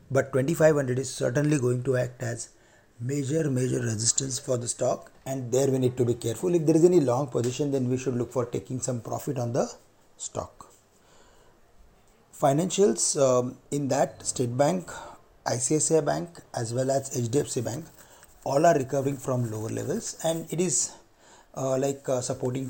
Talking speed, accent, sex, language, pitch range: 170 wpm, Indian, male, English, 120-145 Hz